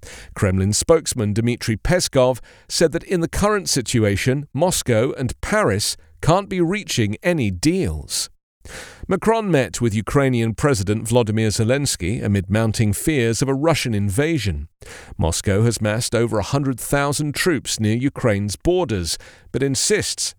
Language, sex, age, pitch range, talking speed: English, male, 40-59, 105-150 Hz, 125 wpm